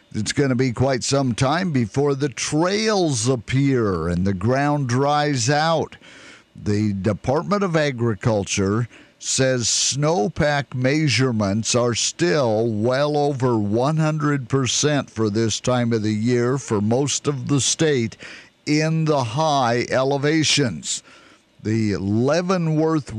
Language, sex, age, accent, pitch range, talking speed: English, male, 50-69, American, 115-145 Hz, 115 wpm